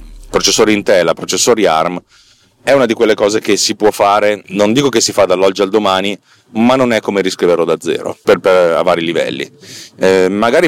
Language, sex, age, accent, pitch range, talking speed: Italian, male, 30-49, native, 90-115 Hz, 195 wpm